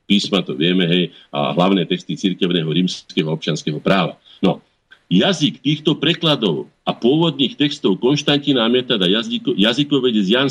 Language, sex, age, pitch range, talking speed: Slovak, male, 50-69, 100-145 Hz, 130 wpm